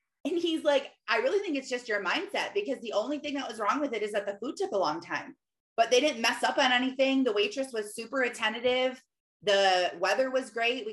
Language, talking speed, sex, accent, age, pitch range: English, 240 wpm, female, American, 20-39, 190-260 Hz